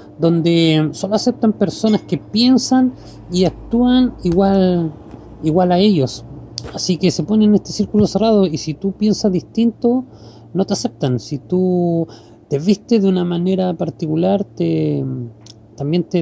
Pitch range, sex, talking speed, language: 150-205 Hz, male, 145 wpm, Spanish